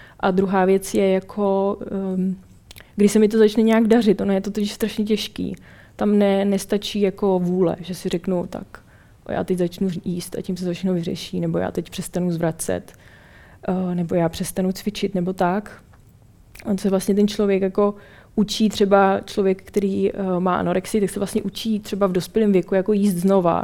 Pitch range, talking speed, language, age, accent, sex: 180-205 Hz, 180 wpm, Czech, 20-39, native, female